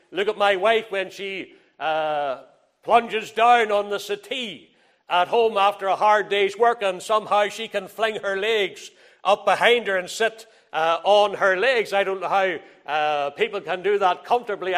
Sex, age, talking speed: male, 60-79, 185 wpm